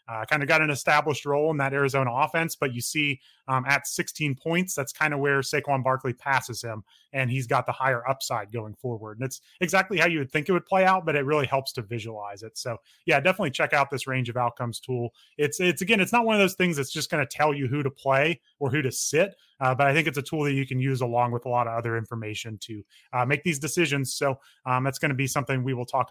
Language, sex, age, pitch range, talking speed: English, male, 30-49, 125-155 Hz, 270 wpm